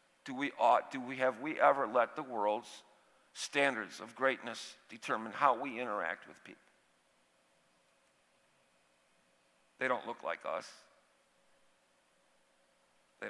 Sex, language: male, English